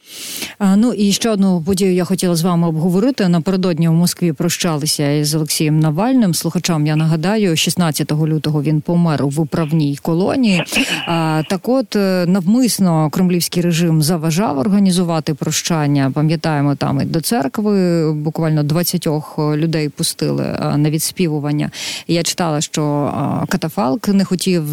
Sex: female